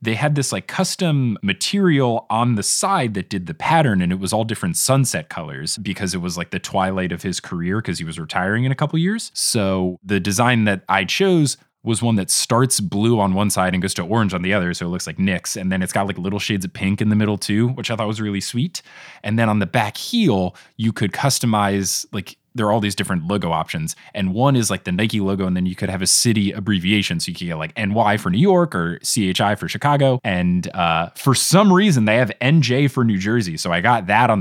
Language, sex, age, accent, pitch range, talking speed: English, male, 20-39, American, 95-125 Hz, 250 wpm